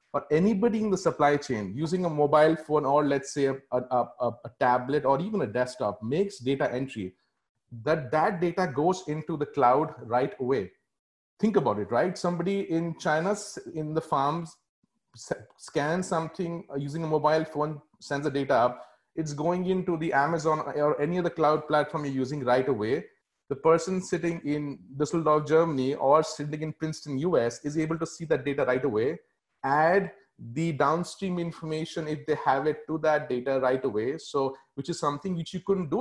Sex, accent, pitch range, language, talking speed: male, Indian, 140-175 Hz, English, 180 wpm